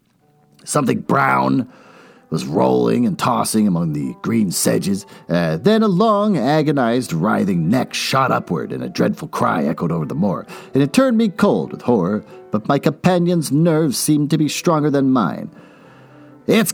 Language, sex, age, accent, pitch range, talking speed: English, male, 50-69, American, 140-210 Hz, 160 wpm